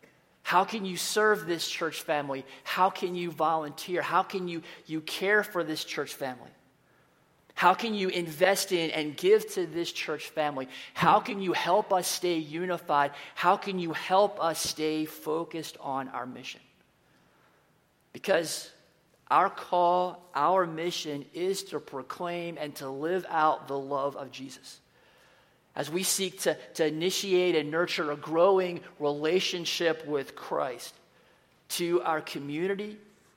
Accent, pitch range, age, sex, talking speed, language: American, 155-185 Hz, 40-59, male, 145 wpm, English